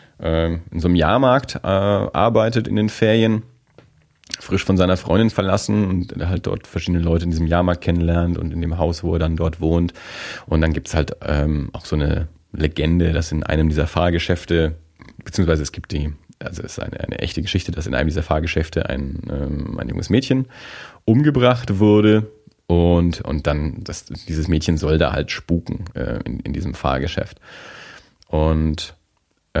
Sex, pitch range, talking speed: male, 80-95 Hz, 175 wpm